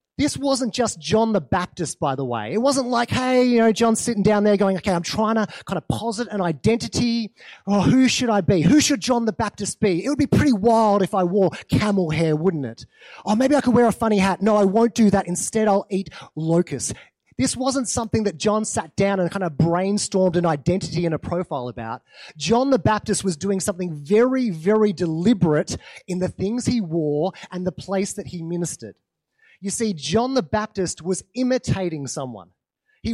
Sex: male